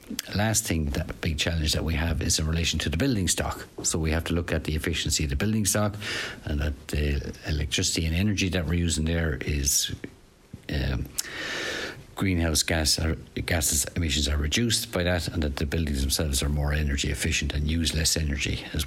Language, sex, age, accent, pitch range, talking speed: English, male, 60-79, Irish, 75-90 Hz, 195 wpm